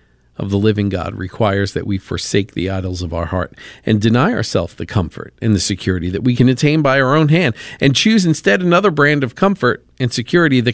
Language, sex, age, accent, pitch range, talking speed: English, male, 50-69, American, 90-130 Hz, 220 wpm